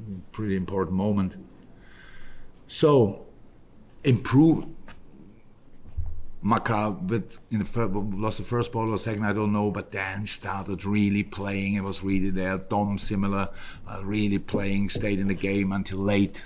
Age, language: 50-69, English